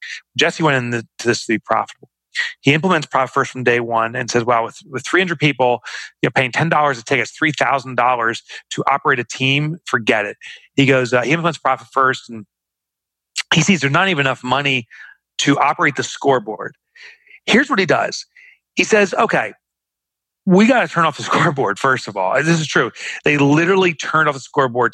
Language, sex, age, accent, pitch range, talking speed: English, male, 30-49, American, 120-155 Hz, 190 wpm